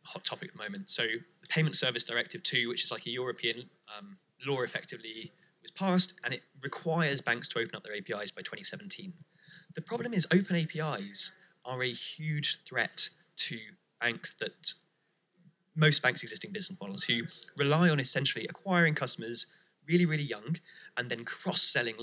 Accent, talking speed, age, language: British, 165 wpm, 20-39, English